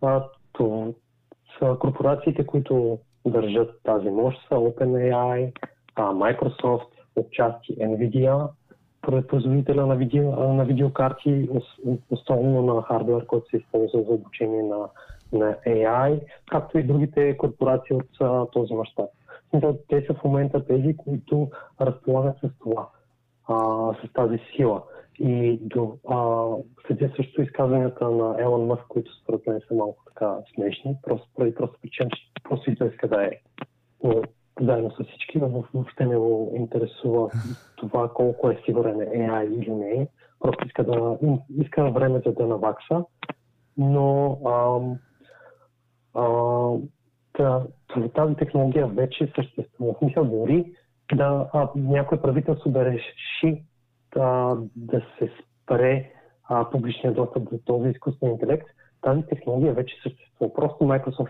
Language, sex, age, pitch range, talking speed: Bulgarian, male, 30-49, 120-140 Hz, 125 wpm